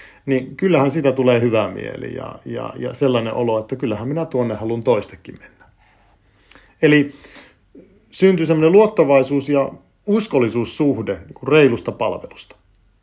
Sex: male